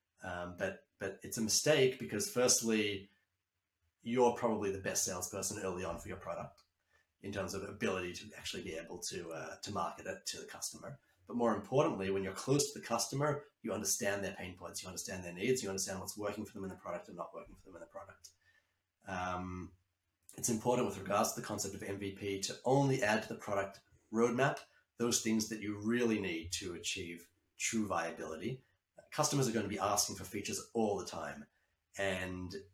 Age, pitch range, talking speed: 30-49, 95-110 Hz, 200 wpm